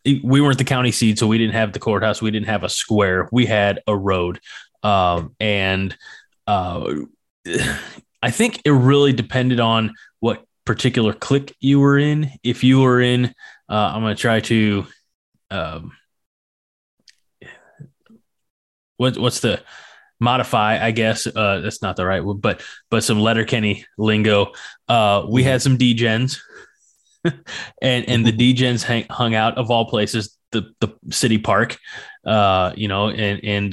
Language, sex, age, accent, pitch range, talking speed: English, male, 20-39, American, 105-125 Hz, 155 wpm